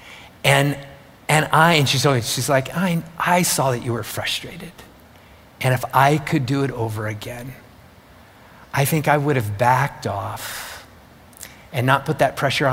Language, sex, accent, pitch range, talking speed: English, male, American, 125-165 Hz, 165 wpm